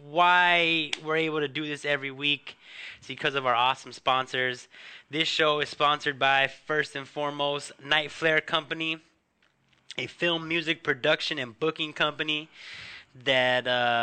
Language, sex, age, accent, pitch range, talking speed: English, male, 20-39, American, 125-150 Hz, 140 wpm